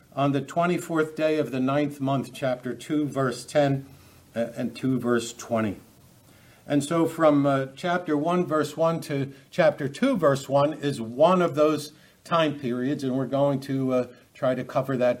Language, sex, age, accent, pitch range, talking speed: English, male, 60-79, American, 130-160 Hz, 175 wpm